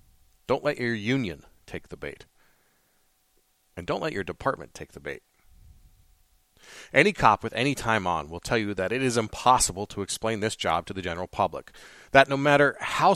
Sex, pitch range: male, 95-130 Hz